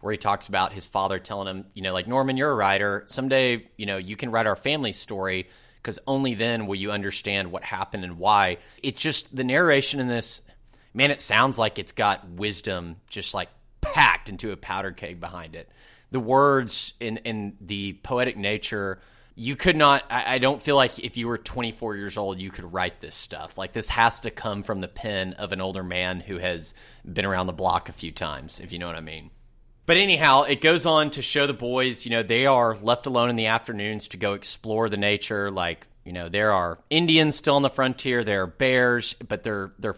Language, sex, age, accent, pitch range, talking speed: English, male, 30-49, American, 95-120 Hz, 220 wpm